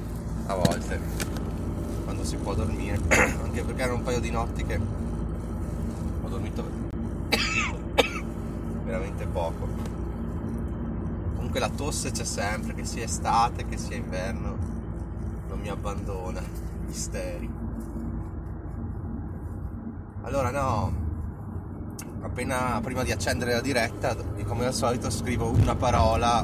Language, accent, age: Italian, native, 30-49